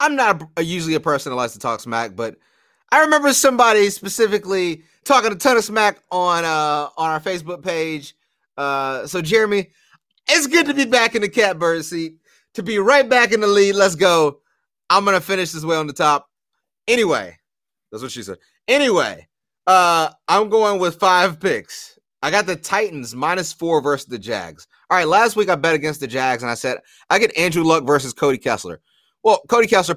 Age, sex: 30-49, male